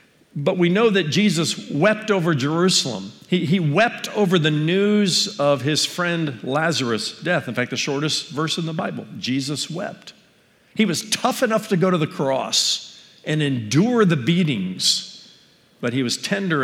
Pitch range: 130-185 Hz